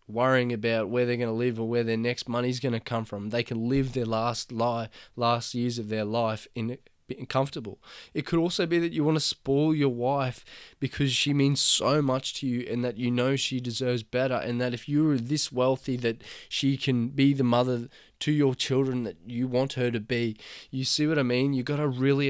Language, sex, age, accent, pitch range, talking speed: English, male, 10-29, Australian, 120-145 Hz, 230 wpm